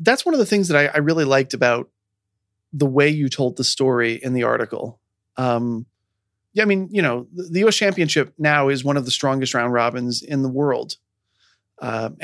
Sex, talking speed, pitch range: male, 205 wpm, 125-175 Hz